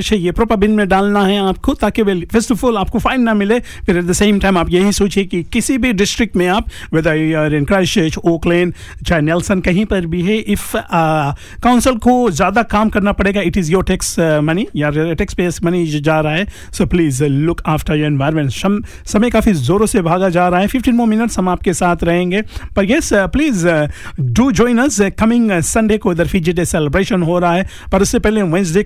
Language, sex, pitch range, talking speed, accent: Hindi, male, 170-215 Hz, 105 wpm, native